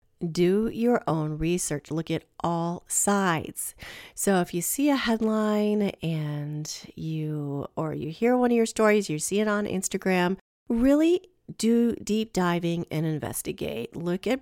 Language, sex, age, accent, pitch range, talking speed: English, female, 40-59, American, 170-230 Hz, 150 wpm